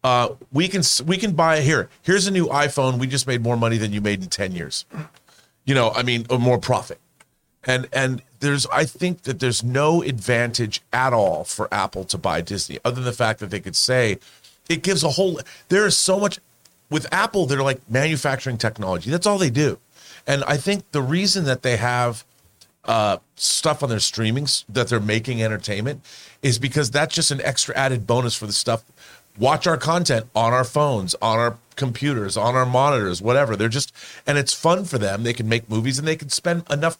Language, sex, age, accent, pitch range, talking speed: English, male, 40-59, American, 115-150 Hz, 205 wpm